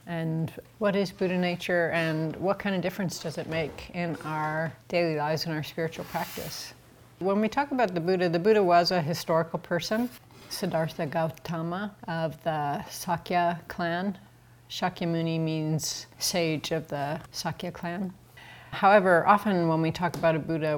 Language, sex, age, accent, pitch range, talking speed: English, female, 30-49, American, 155-175 Hz, 155 wpm